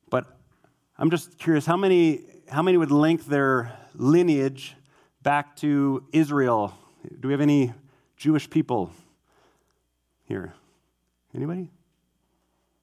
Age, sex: 30-49, male